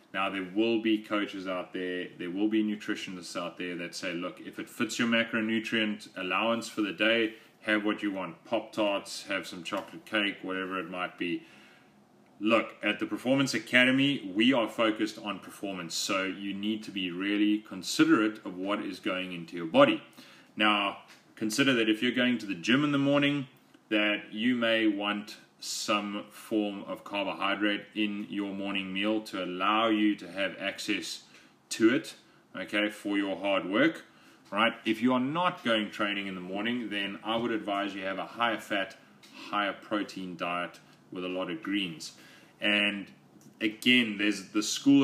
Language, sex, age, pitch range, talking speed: English, male, 30-49, 100-115 Hz, 175 wpm